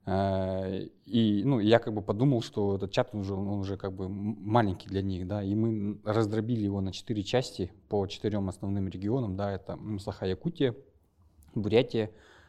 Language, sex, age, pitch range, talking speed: Russian, male, 20-39, 95-110 Hz, 160 wpm